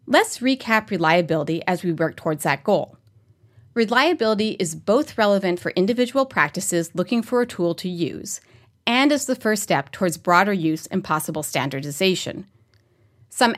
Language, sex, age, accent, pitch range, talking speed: English, female, 30-49, American, 155-230 Hz, 150 wpm